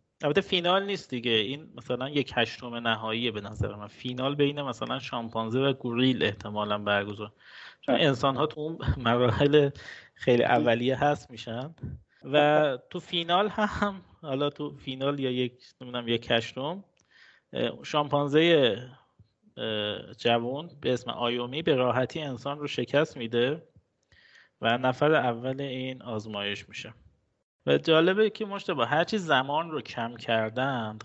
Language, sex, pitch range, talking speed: Persian, male, 115-145 Hz, 135 wpm